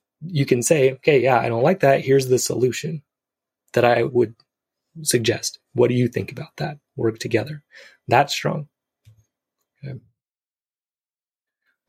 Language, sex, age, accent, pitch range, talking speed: English, male, 20-39, American, 115-150 Hz, 135 wpm